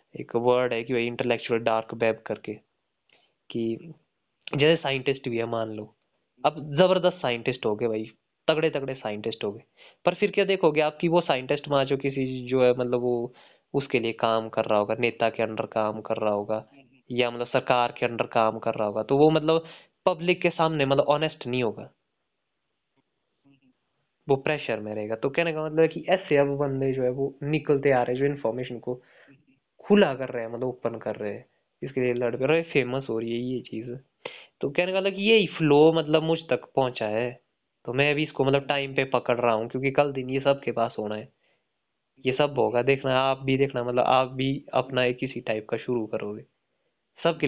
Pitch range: 115-140 Hz